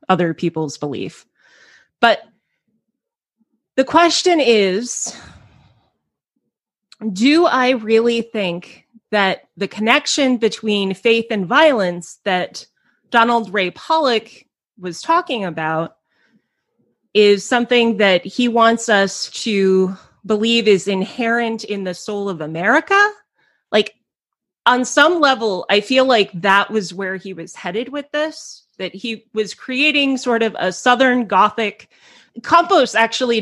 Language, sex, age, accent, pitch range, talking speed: English, female, 30-49, American, 195-245 Hz, 120 wpm